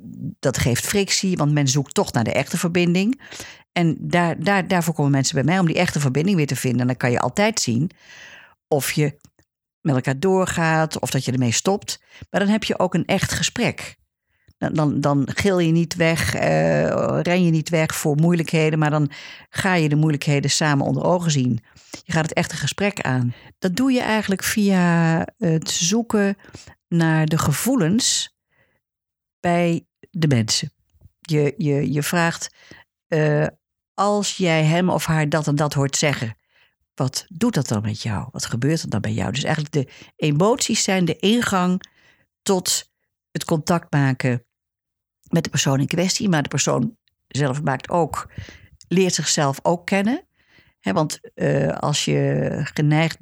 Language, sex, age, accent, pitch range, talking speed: Dutch, female, 50-69, Dutch, 140-180 Hz, 165 wpm